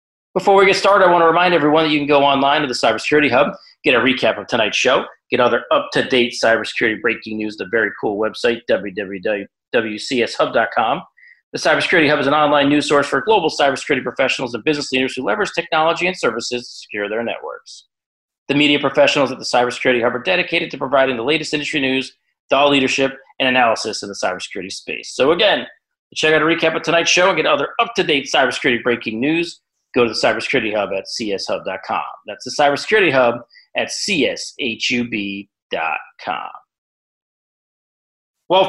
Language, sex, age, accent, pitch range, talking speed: English, male, 40-59, American, 125-160 Hz, 175 wpm